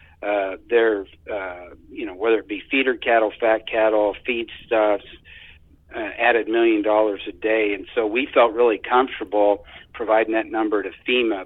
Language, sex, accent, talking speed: English, male, American, 155 wpm